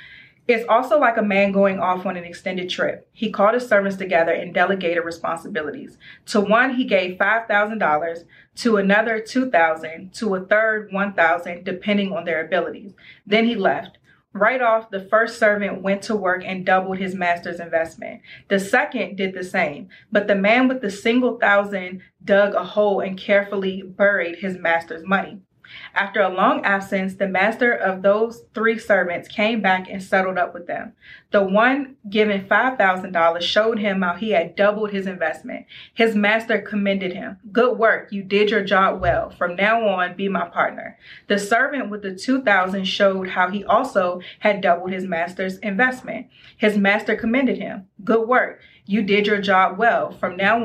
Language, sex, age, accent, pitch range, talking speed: English, female, 30-49, American, 185-220 Hz, 170 wpm